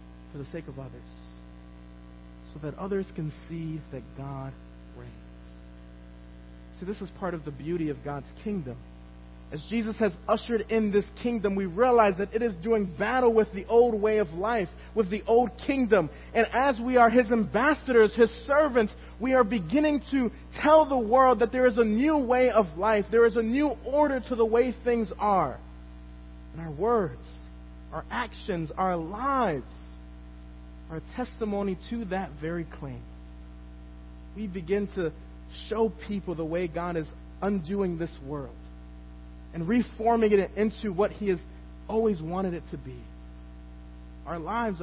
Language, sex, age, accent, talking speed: English, male, 40-59, American, 160 wpm